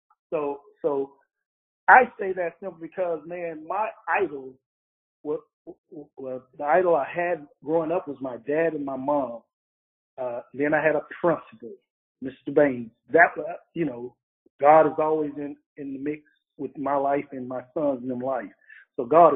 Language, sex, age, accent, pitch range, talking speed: English, male, 40-59, American, 140-180 Hz, 160 wpm